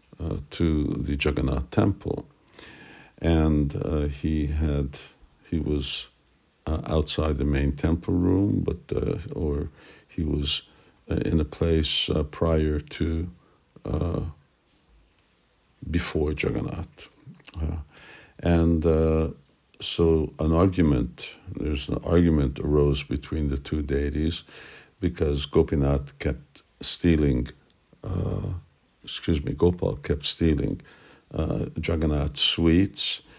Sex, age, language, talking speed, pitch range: male, 50-69, English, 105 wpm, 70-85 Hz